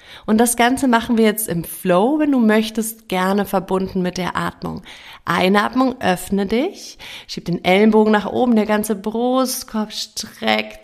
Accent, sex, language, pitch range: German, female, German, 195-250 Hz